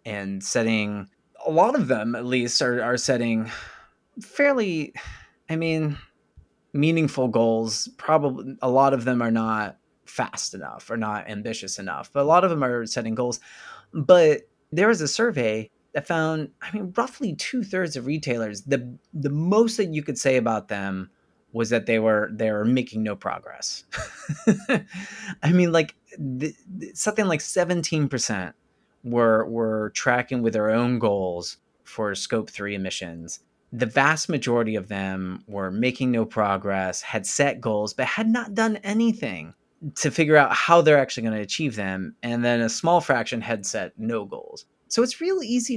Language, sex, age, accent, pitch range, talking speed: English, male, 30-49, American, 110-165 Hz, 170 wpm